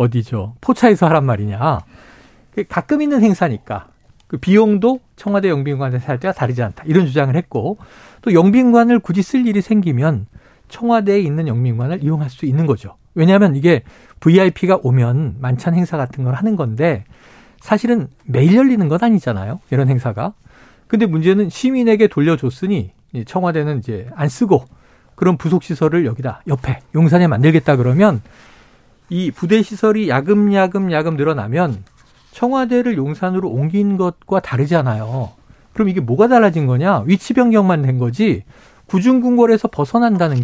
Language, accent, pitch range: Korean, native, 130-210 Hz